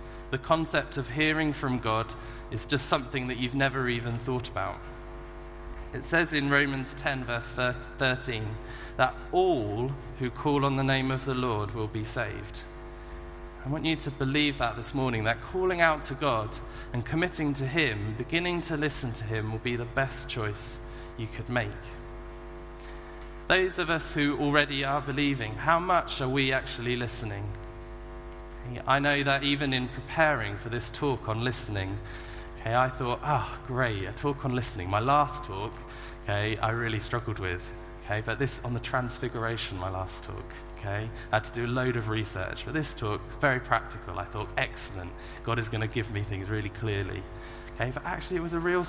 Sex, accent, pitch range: male, British, 110-135 Hz